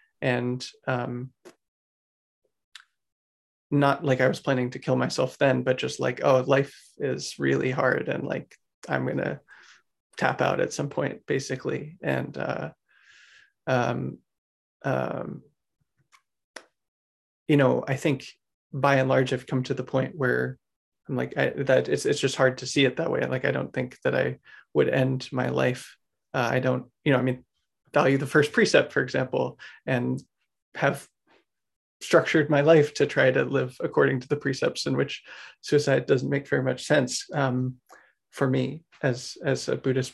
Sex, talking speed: male, 165 wpm